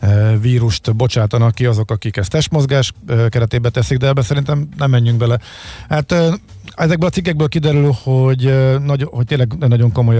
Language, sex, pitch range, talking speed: Hungarian, male, 105-125 Hz, 145 wpm